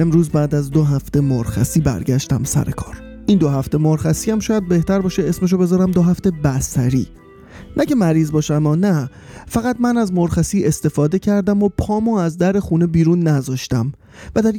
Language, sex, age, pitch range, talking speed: Persian, male, 30-49, 150-200 Hz, 170 wpm